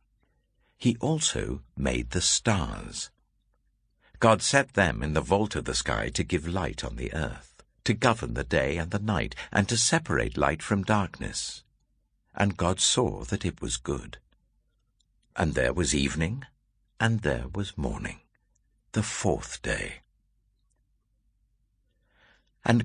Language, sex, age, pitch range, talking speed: English, male, 60-79, 80-115 Hz, 135 wpm